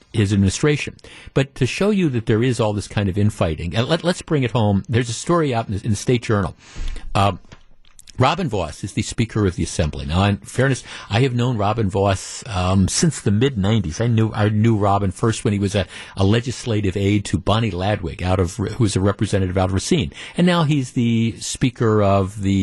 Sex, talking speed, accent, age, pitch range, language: male, 225 wpm, American, 50-69, 100-135 Hz, English